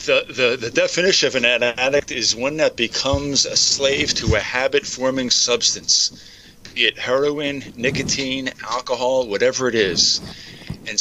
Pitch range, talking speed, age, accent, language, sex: 115-135 Hz, 140 wpm, 50-69, American, English, male